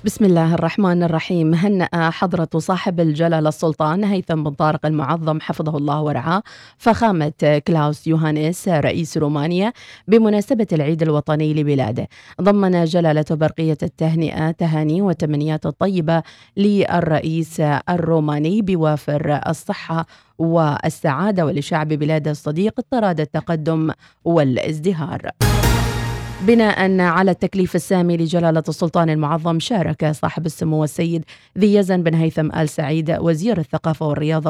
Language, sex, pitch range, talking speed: Arabic, female, 155-180 Hz, 110 wpm